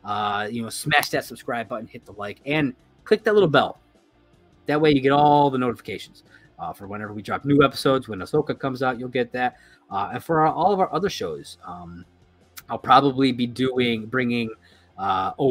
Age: 30-49